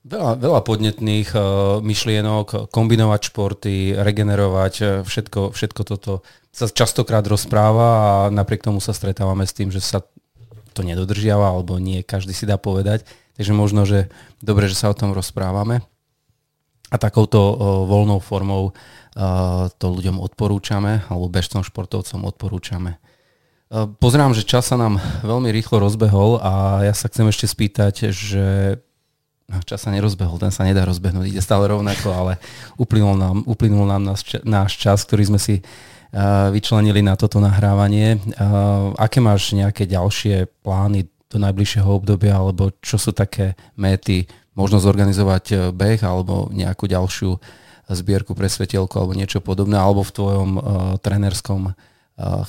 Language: Slovak